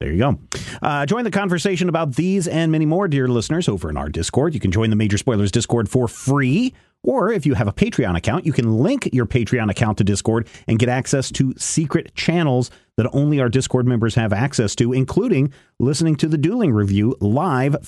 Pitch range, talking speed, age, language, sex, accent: 115-150 Hz, 210 wpm, 40-59, English, male, American